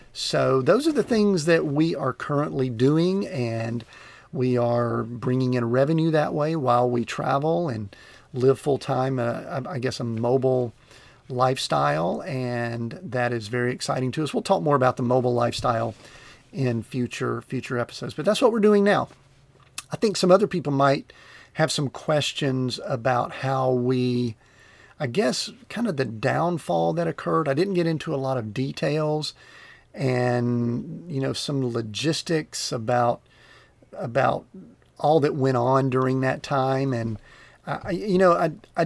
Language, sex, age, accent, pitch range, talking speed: English, male, 40-59, American, 120-145 Hz, 155 wpm